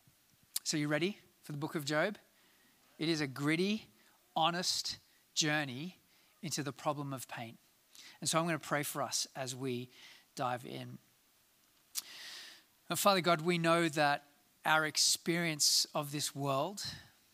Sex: male